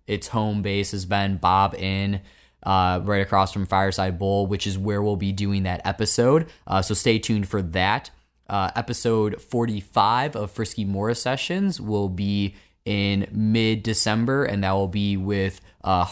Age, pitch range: 20-39, 95-110 Hz